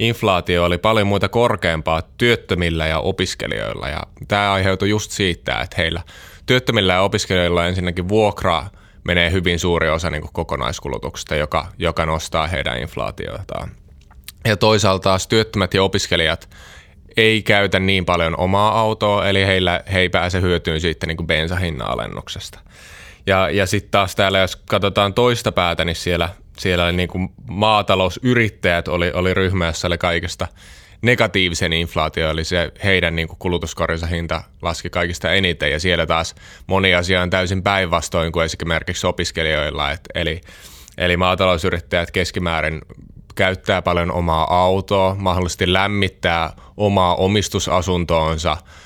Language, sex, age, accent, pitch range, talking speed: Finnish, male, 20-39, native, 85-95 Hz, 130 wpm